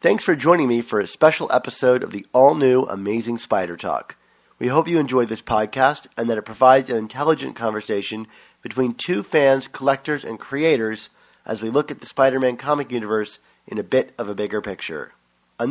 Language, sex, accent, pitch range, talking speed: English, male, American, 115-150 Hz, 185 wpm